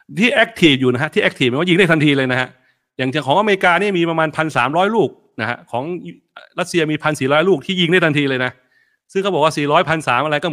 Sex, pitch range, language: male, 125-170 Hz, Thai